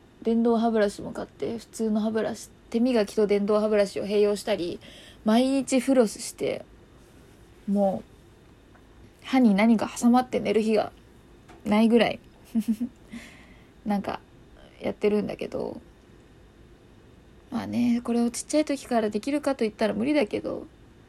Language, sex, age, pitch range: Japanese, female, 20-39, 210-250 Hz